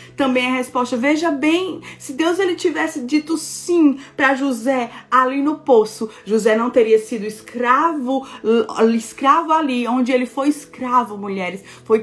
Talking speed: 145 wpm